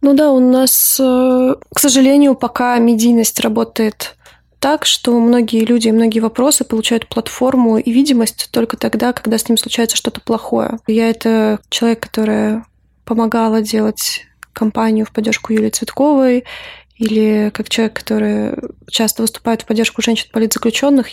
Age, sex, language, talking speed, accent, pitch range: 20-39, female, Russian, 140 wpm, native, 220-245 Hz